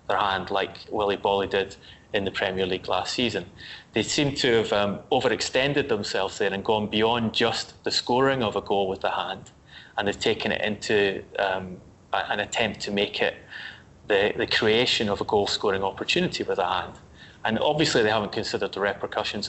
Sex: male